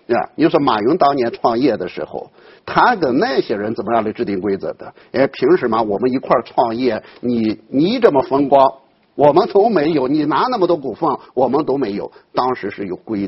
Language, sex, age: Chinese, male, 50-69